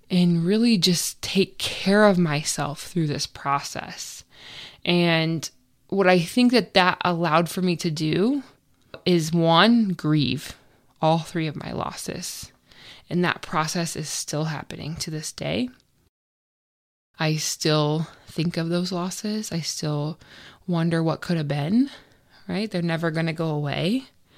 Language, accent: English, American